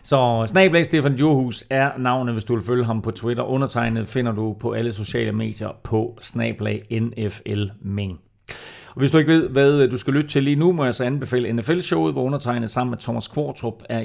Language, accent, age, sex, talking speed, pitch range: Danish, native, 40-59, male, 205 wpm, 105-140 Hz